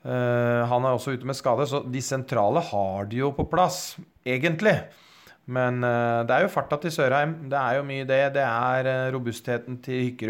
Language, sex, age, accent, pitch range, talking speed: English, male, 30-49, Norwegian, 110-140 Hz, 210 wpm